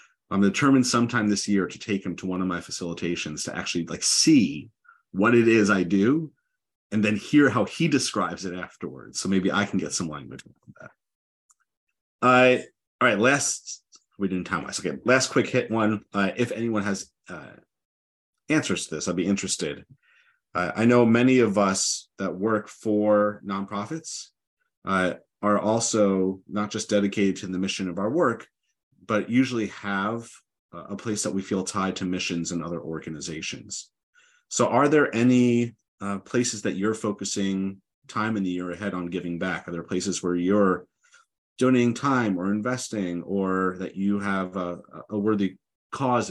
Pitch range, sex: 95-115 Hz, male